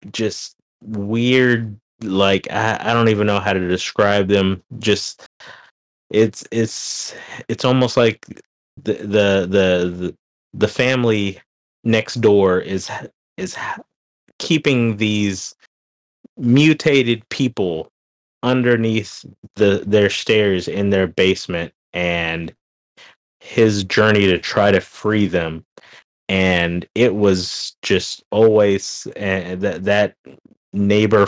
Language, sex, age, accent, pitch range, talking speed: English, male, 20-39, American, 90-110 Hz, 105 wpm